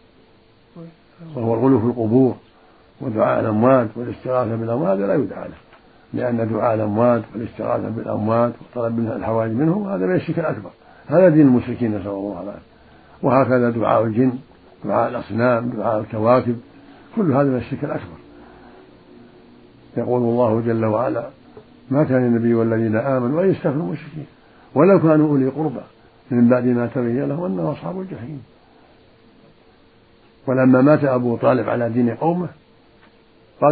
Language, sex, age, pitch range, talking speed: Arabic, male, 60-79, 115-145 Hz, 130 wpm